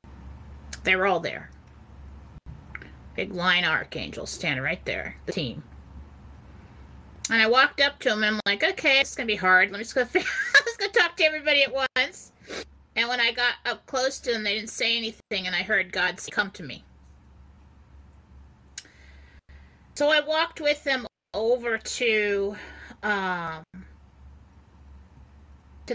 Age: 30-49